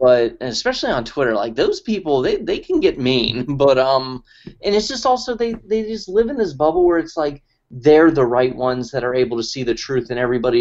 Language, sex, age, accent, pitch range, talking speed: English, male, 30-49, American, 115-160 Hz, 240 wpm